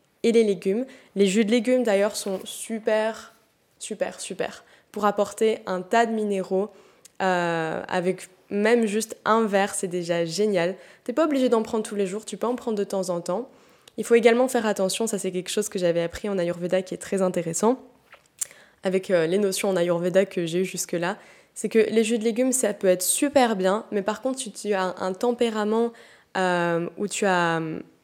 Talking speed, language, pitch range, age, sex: 205 wpm, French, 185-225 Hz, 20-39, female